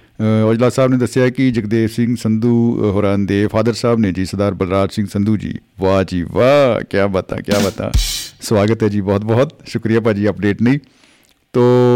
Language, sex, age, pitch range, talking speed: Punjabi, male, 50-69, 100-120 Hz, 180 wpm